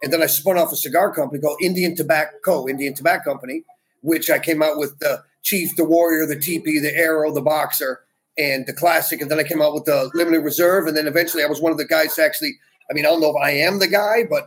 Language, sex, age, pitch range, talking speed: English, male, 40-59, 155-215 Hz, 260 wpm